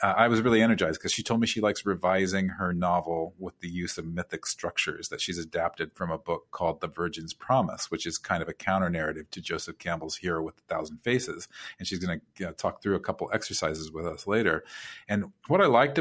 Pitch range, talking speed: 85-100 Hz, 230 wpm